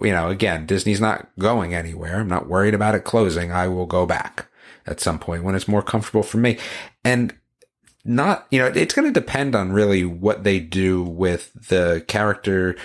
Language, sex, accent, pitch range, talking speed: English, male, American, 95-115 Hz, 195 wpm